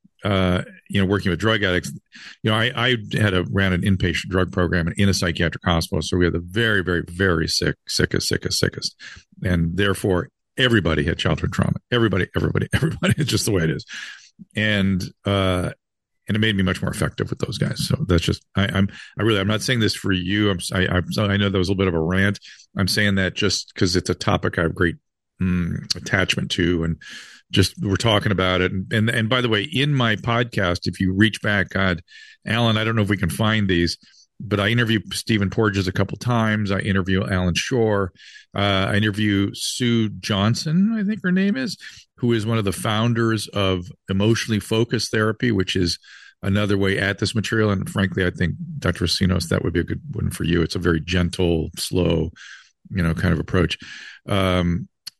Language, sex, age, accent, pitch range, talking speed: English, male, 50-69, American, 90-110 Hz, 210 wpm